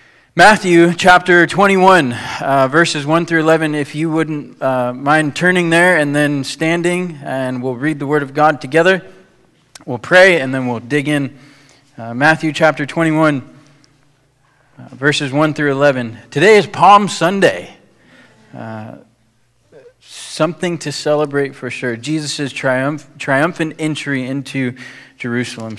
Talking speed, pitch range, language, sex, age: 135 wpm, 130-170 Hz, English, male, 20-39